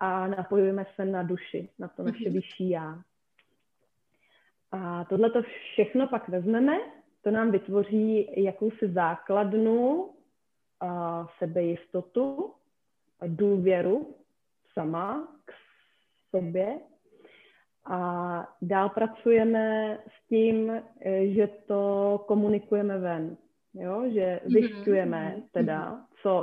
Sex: female